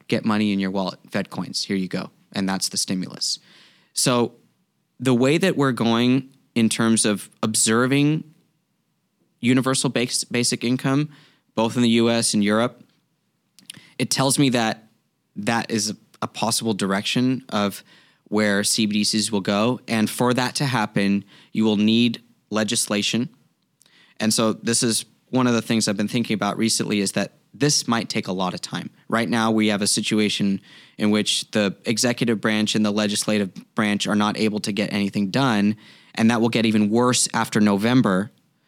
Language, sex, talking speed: English, male, 170 wpm